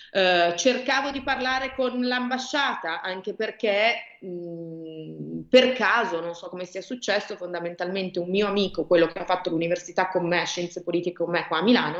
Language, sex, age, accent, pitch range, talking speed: Italian, female, 30-49, native, 165-220 Hz, 170 wpm